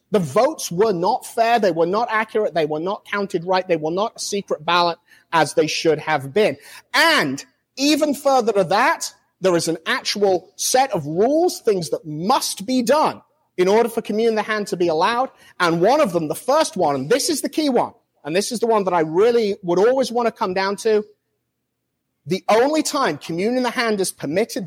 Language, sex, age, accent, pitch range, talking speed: English, male, 30-49, British, 175-245 Hz, 215 wpm